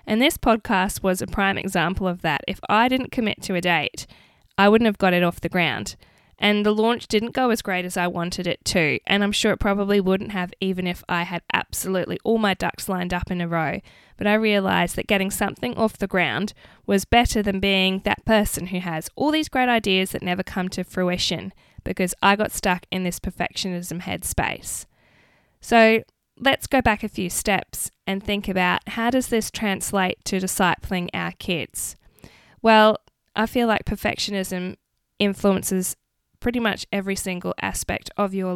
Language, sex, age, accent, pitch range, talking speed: English, female, 10-29, Australian, 180-210 Hz, 190 wpm